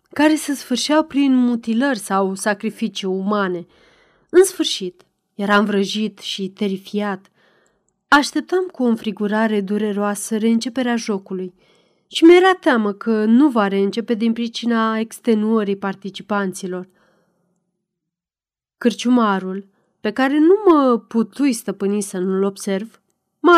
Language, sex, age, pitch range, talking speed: Romanian, female, 30-49, 195-250 Hz, 110 wpm